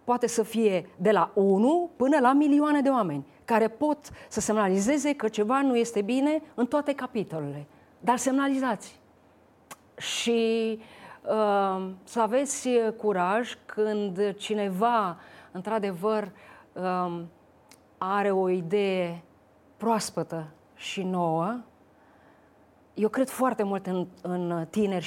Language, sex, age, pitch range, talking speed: Romanian, female, 30-49, 185-230 Hz, 105 wpm